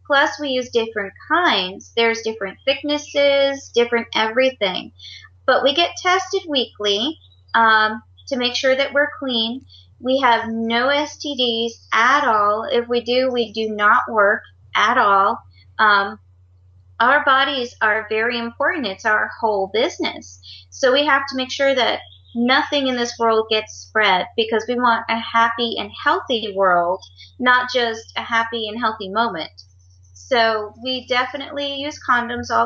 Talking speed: 150 wpm